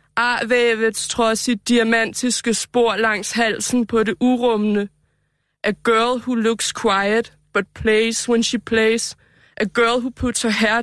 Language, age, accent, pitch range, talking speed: Danish, 20-39, native, 220-245 Hz, 145 wpm